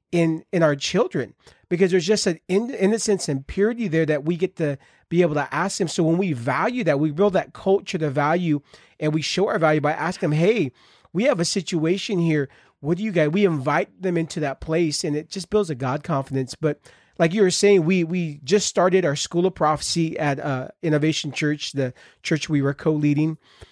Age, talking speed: 30-49, 215 wpm